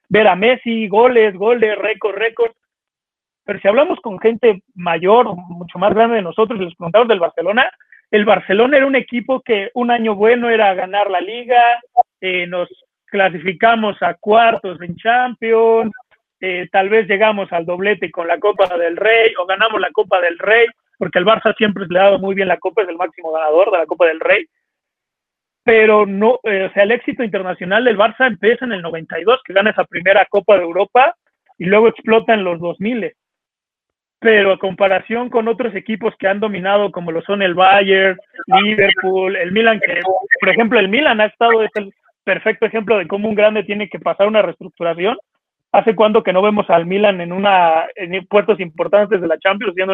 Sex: male